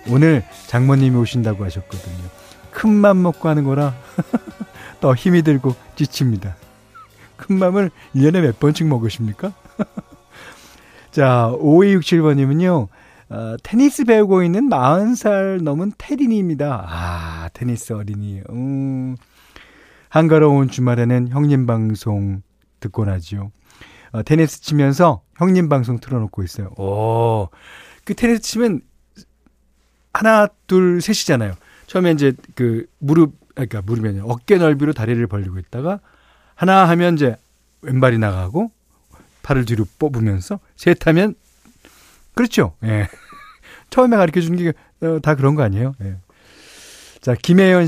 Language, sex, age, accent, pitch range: Korean, male, 40-59, native, 110-175 Hz